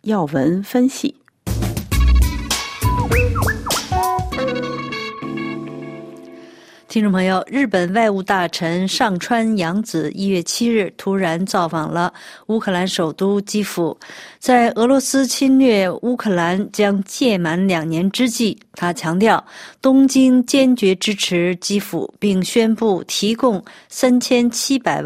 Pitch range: 180-235 Hz